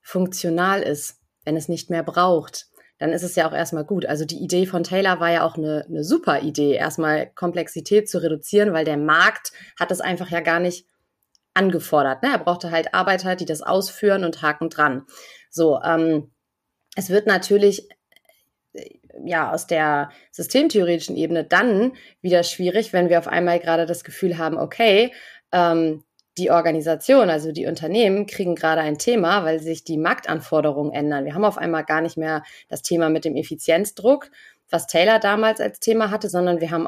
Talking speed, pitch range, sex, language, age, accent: 175 wpm, 160-200 Hz, female, German, 30-49, German